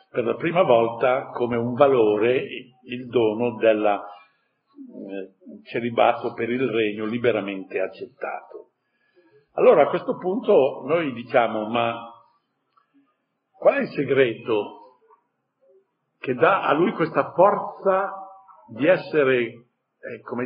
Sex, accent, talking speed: male, native, 110 wpm